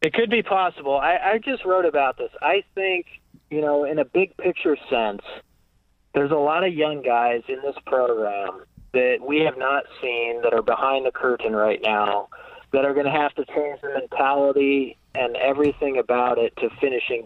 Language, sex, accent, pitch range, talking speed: English, male, American, 125-185 Hz, 190 wpm